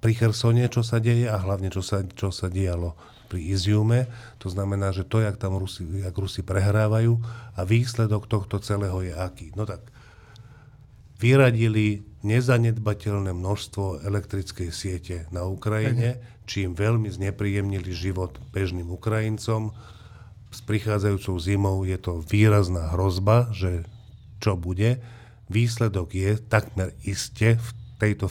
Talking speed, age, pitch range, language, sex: 130 wpm, 50-69, 95-110 Hz, Slovak, male